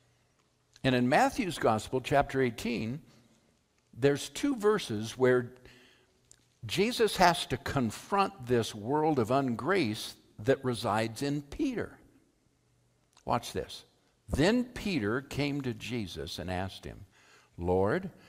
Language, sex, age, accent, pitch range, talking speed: English, male, 60-79, American, 105-150 Hz, 110 wpm